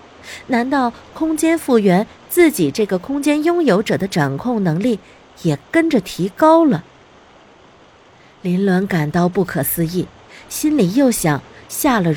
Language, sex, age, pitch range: Chinese, female, 50-69, 165-255 Hz